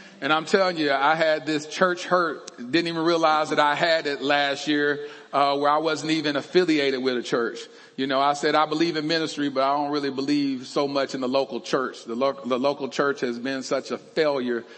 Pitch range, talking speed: 140-170 Hz, 225 wpm